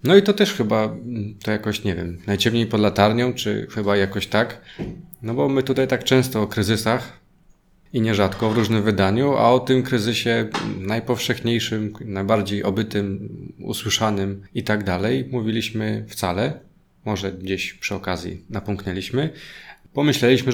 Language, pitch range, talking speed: Polish, 100-115 Hz, 140 wpm